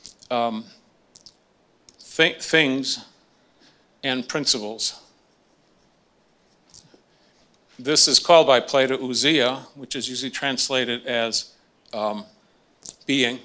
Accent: American